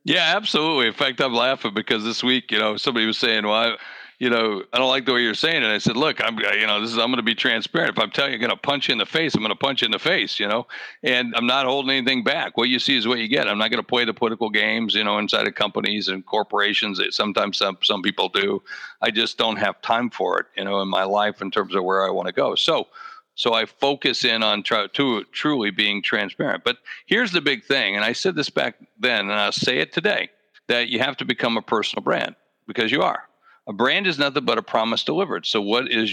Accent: American